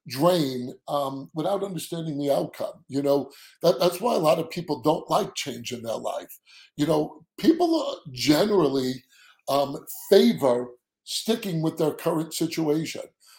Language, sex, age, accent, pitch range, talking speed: English, male, 50-69, American, 145-190 Hz, 145 wpm